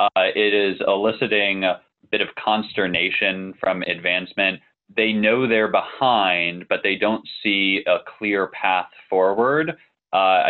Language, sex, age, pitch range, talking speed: English, male, 20-39, 95-115 Hz, 130 wpm